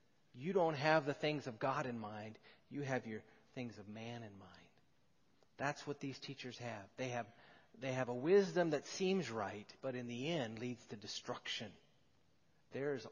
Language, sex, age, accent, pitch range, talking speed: English, male, 40-59, American, 130-175 Hz, 180 wpm